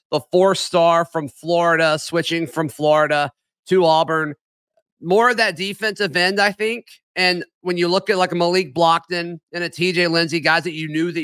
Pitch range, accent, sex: 150-185 Hz, American, male